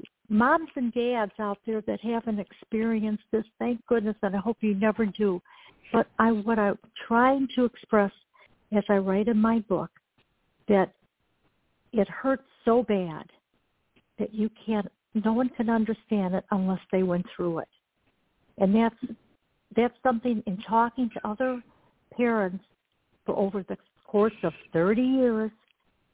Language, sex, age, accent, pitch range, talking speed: English, female, 60-79, American, 195-230 Hz, 145 wpm